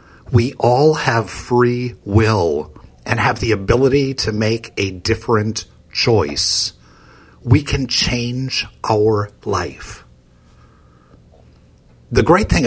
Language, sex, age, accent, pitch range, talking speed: English, male, 60-79, American, 85-135 Hz, 105 wpm